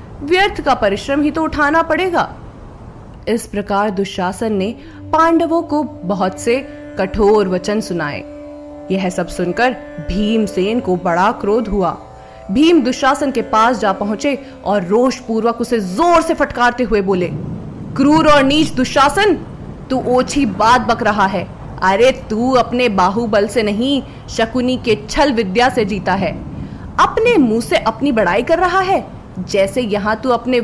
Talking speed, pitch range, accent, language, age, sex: 145 wpm, 205-270 Hz, native, Hindi, 20-39, female